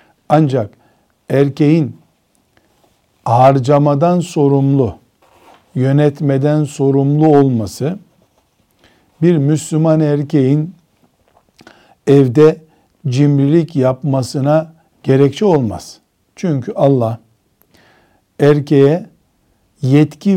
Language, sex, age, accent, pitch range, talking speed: Turkish, male, 60-79, native, 130-155 Hz, 55 wpm